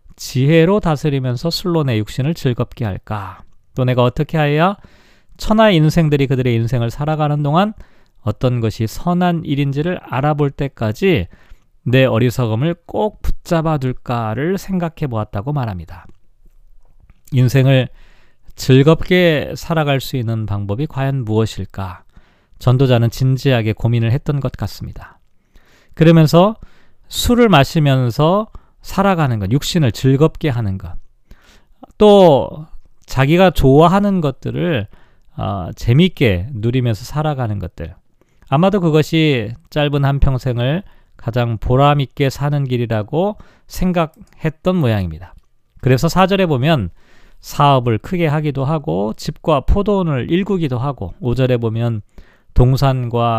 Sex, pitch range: male, 115-160 Hz